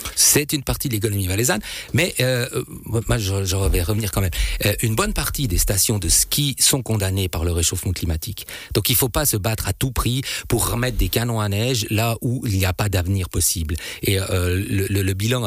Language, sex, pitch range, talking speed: French, male, 95-115 Hz, 220 wpm